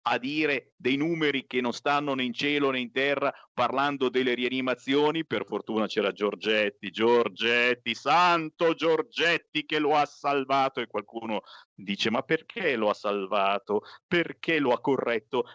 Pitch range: 125-160 Hz